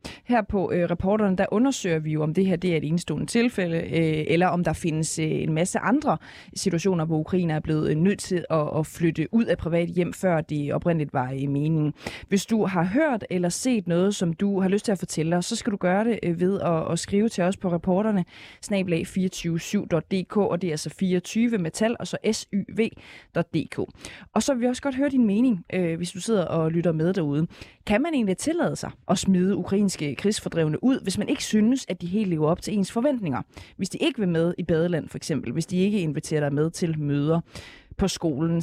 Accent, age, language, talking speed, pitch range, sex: native, 20-39, Danish, 225 wpm, 165-215 Hz, female